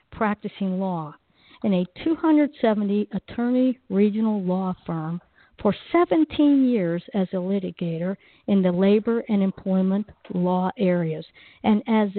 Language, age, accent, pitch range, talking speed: English, 50-69, American, 185-235 Hz, 120 wpm